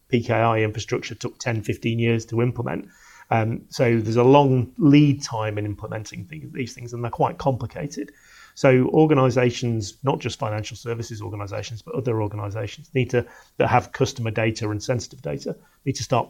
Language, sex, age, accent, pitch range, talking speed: English, male, 30-49, British, 115-135 Hz, 170 wpm